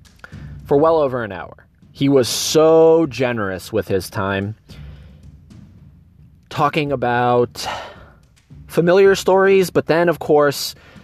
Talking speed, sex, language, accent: 110 wpm, male, English, American